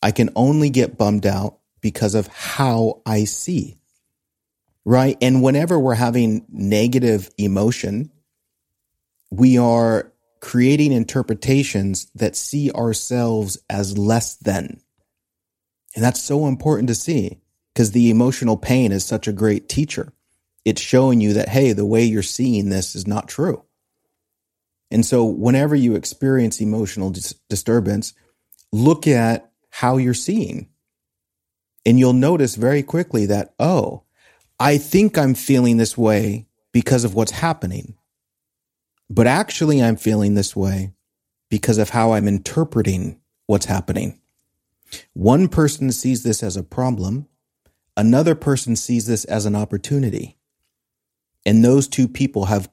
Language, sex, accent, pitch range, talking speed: English, male, American, 105-130 Hz, 135 wpm